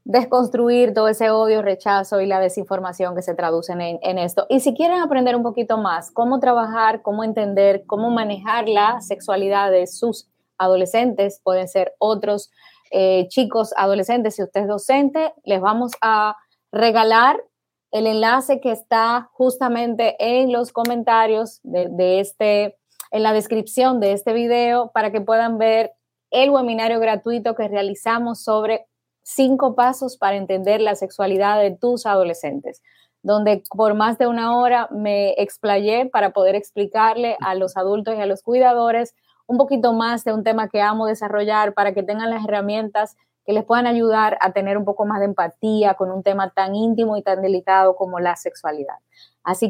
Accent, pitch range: American, 200-235 Hz